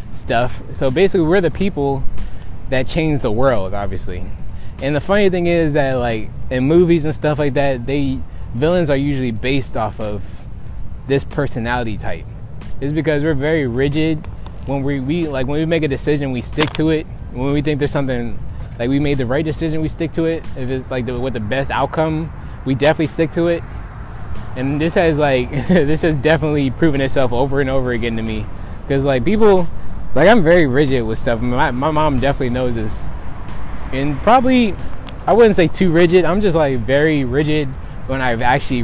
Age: 20-39